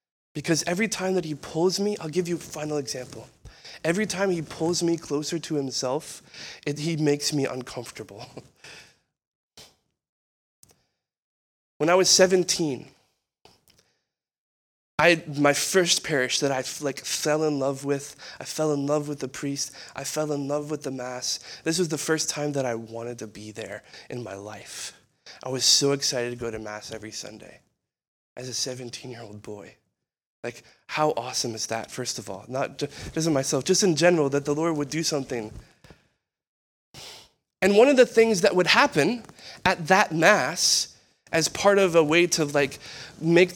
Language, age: English, 20-39